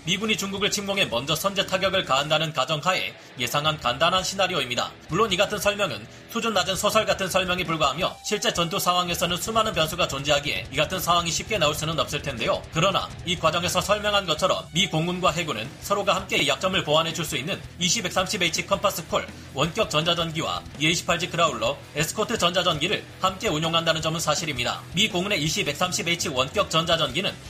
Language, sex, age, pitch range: Korean, male, 40-59, 155-195 Hz